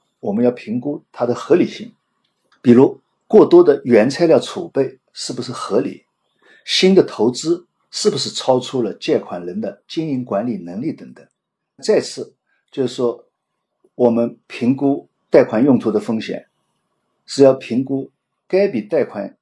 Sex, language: male, Chinese